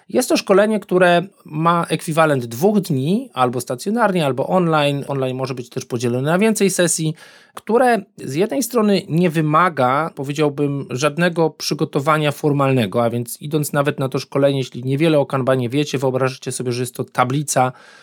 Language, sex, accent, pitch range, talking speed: Polish, male, native, 130-165 Hz, 160 wpm